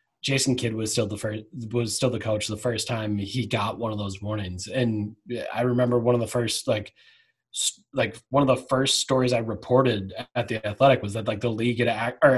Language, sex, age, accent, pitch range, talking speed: English, male, 20-39, American, 120-145 Hz, 220 wpm